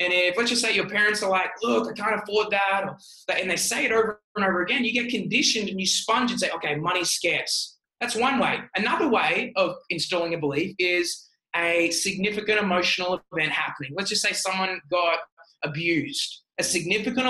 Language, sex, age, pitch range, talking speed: English, male, 20-39, 175-235 Hz, 195 wpm